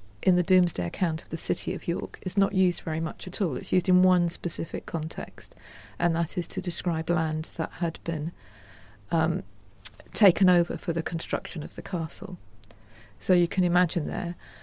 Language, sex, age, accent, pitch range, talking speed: English, female, 40-59, British, 150-180 Hz, 185 wpm